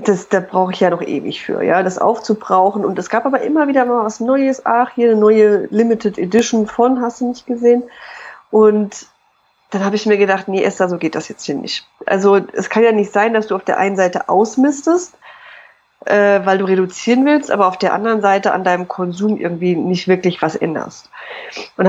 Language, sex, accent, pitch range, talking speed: German, female, German, 185-235 Hz, 210 wpm